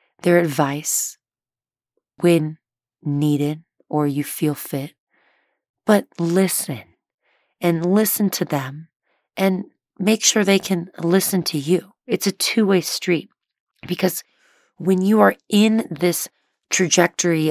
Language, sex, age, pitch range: English, female, 30-49, 150-190 Hz